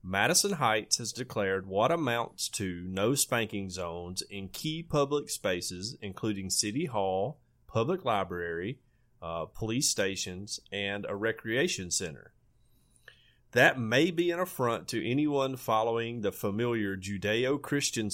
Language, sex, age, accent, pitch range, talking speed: English, male, 30-49, American, 100-130 Hz, 120 wpm